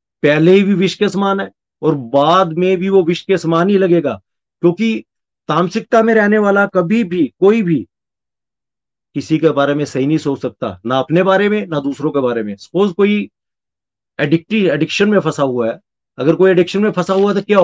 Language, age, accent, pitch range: Hindi, 40-59, native, 140-185 Hz